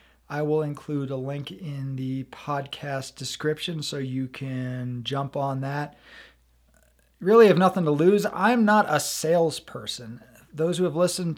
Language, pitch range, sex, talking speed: English, 135-165 Hz, male, 150 wpm